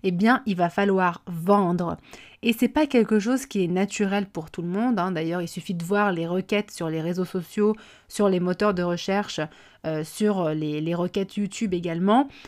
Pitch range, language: 175-215 Hz, French